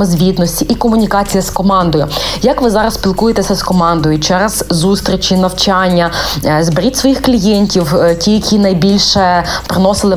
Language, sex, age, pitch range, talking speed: Ukrainian, female, 20-39, 185-210 Hz, 125 wpm